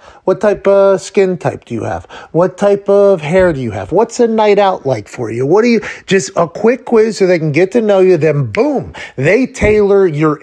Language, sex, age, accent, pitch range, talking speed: English, male, 30-49, American, 150-205 Hz, 235 wpm